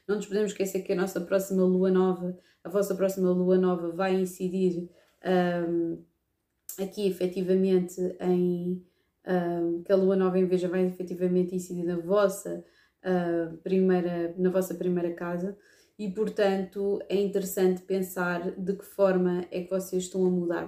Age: 20-39